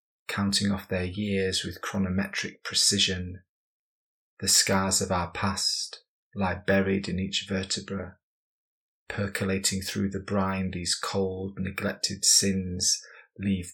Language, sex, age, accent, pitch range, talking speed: English, male, 30-49, British, 95-100 Hz, 115 wpm